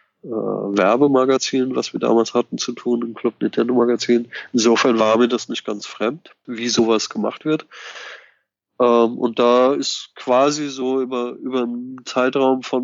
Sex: male